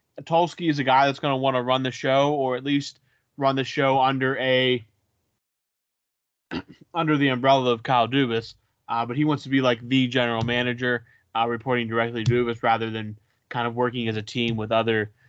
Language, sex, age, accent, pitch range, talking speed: English, male, 20-39, American, 120-140 Hz, 200 wpm